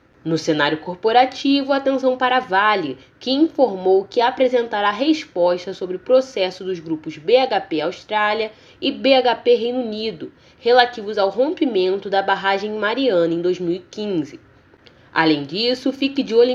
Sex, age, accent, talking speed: female, 10-29, Brazilian, 125 wpm